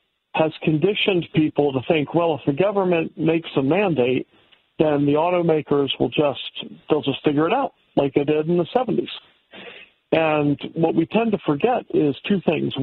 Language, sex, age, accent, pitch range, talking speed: English, male, 50-69, American, 145-180 Hz, 175 wpm